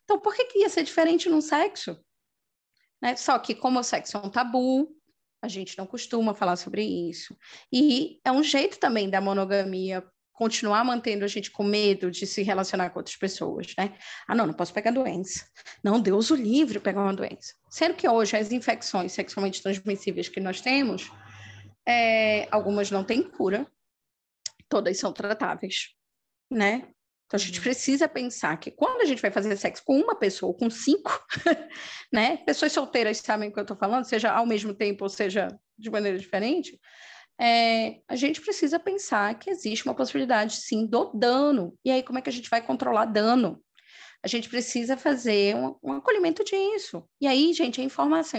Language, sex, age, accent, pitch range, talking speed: Portuguese, female, 20-39, Brazilian, 200-275 Hz, 185 wpm